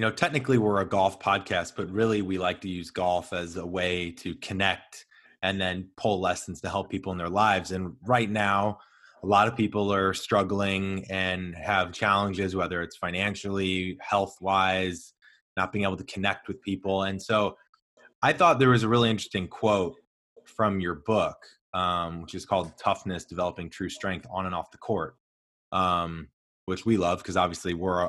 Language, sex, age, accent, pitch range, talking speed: English, male, 20-39, American, 90-110 Hz, 180 wpm